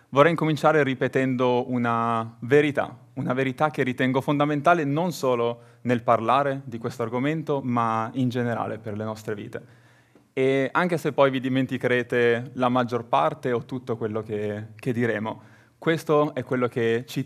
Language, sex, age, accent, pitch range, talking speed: Italian, male, 20-39, native, 120-145 Hz, 155 wpm